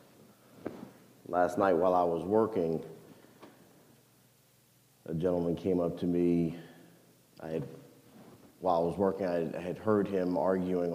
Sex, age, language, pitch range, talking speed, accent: male, 40-59, English, 85-95 Hz, 125 wpm, American